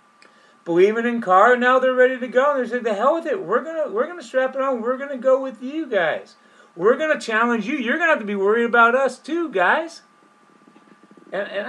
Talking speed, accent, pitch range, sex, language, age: 220 wpm, American, 150-245 Hz, male, English, 40-59